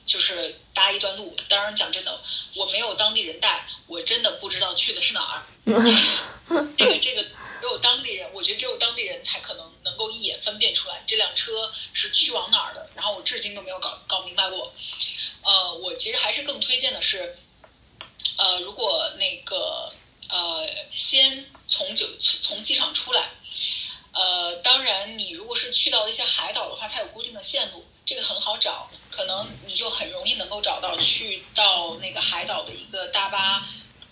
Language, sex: Chinese, female